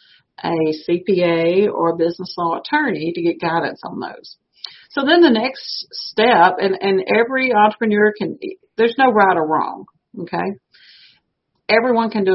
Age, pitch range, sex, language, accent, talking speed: 50-69, 175-235 Hz, female, English, American, 150 wpm